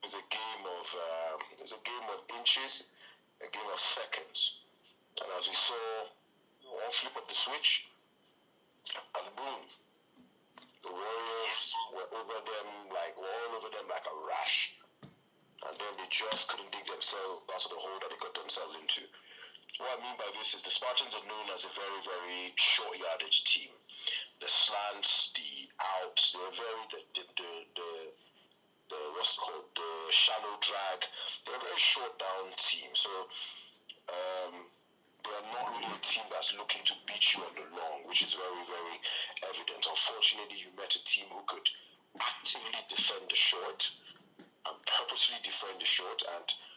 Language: English